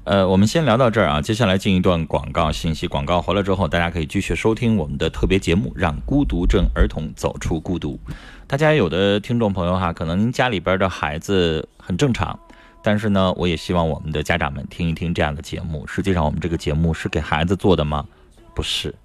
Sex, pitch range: male, 80-105 Hz